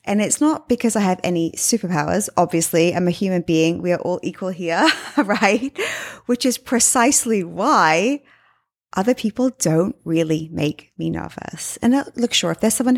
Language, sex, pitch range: English, female, 170-230 Hz